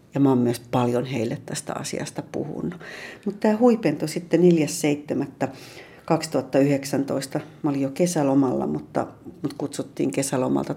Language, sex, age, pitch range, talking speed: Finnish, female, 60-79, 135-155 Hz, 110 wpm